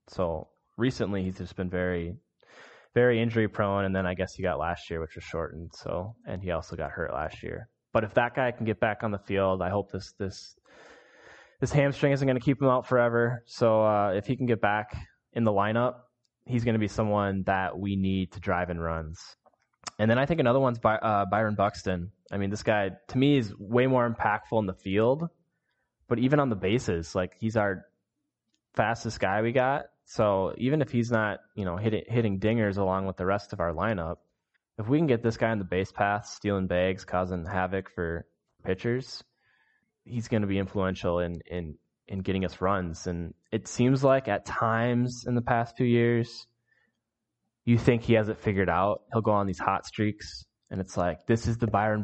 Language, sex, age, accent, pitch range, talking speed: English, male, 20-39, American, 95-115 Hz, 210 wpm